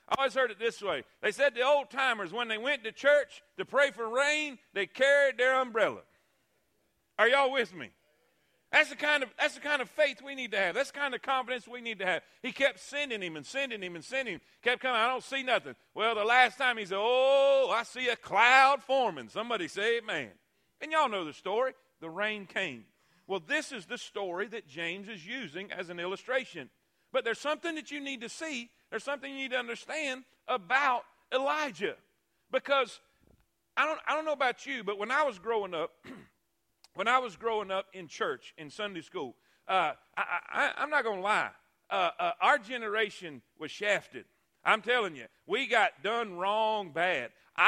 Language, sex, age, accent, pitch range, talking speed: English, male, 50-69, American, 205-275 Hz, 210 wpm